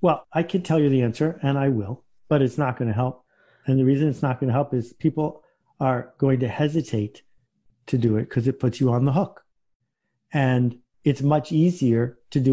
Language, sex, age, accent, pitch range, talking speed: English, male, 50-69, American, 125-160 Hz, 220 wpm